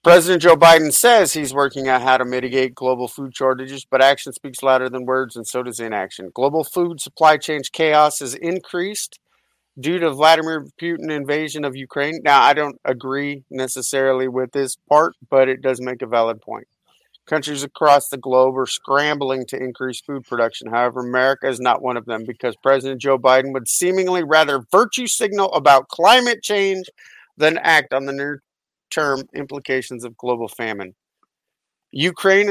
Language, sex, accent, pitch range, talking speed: English, male, American, 130-150 Hz, 170 wpm